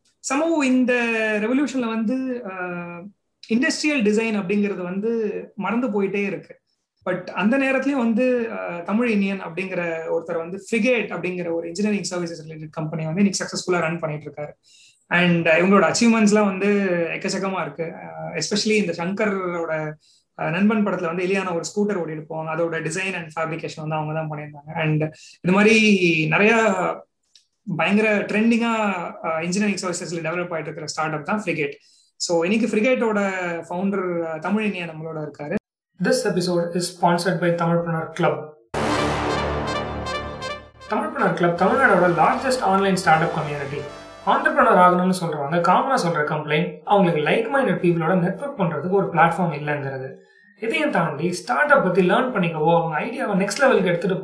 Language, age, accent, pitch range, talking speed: Tamil, 30-49, native, 160-210 Hz, 110 wpm